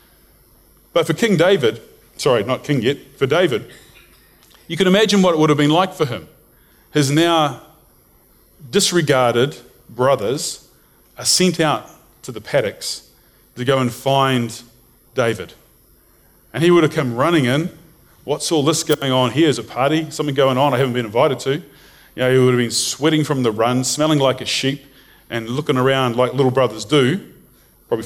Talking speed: 175 wpm